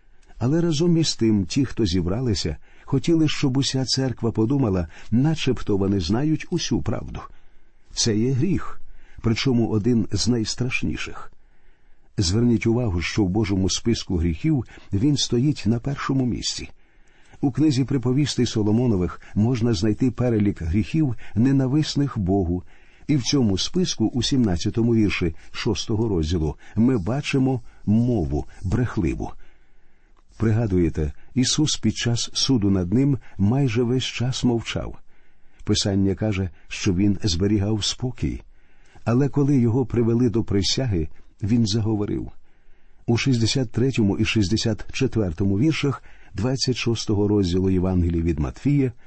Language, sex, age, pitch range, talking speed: Ukrainian, male, 50-69, 100-130 Hz, 115 wpm